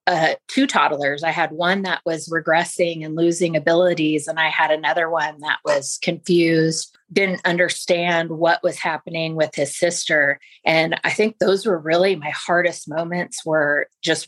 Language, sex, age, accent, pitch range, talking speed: English, female, 30-49, American, 155-180 Hz, 165 wpm